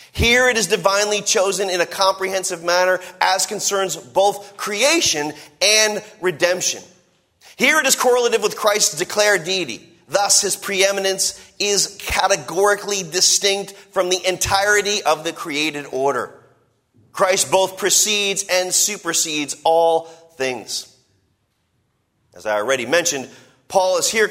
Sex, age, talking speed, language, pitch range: male, 30-49, 125 wpm, English, 160-200 Hz